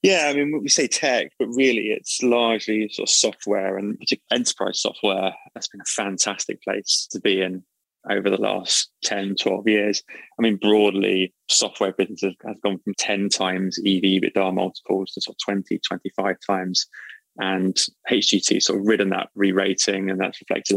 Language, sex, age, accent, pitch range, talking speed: English, male, 20-39, British, 95-110 Hz, 175 wpm